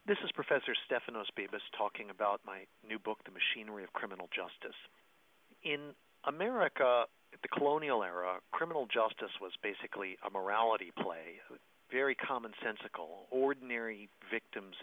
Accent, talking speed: American, 130 wpm